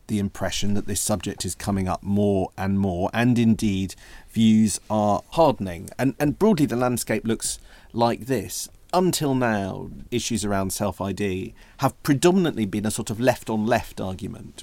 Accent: British